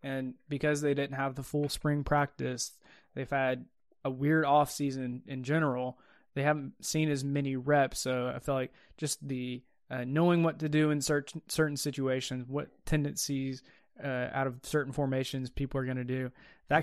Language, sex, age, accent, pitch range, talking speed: English, male, 20-39, American, 130-150 Hz, 180 wpm